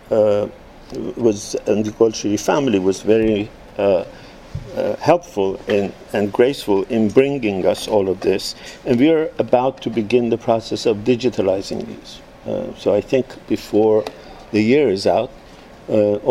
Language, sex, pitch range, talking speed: English, male, 105-125 Hz, 150 wpm